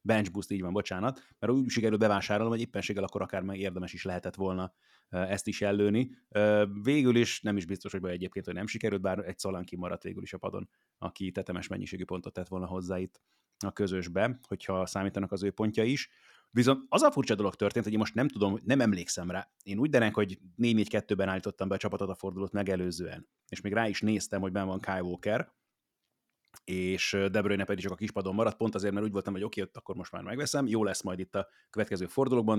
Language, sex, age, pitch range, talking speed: Hungarian, male, 30-49, 95-110 Hz, 215 wpm